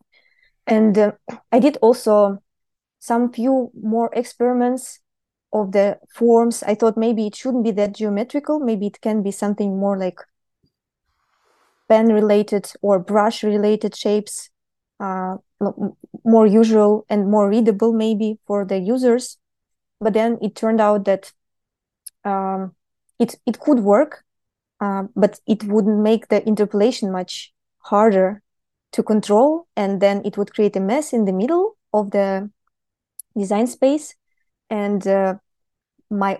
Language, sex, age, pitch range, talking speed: English, female, 20-39, 200-230 Hz, 130 wpm